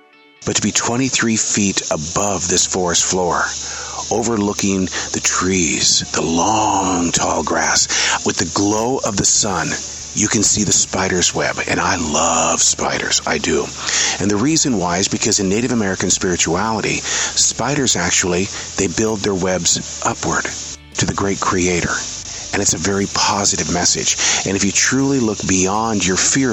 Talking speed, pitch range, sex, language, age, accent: 155 wpm, 80-110 Hz, male, English, 50-69, American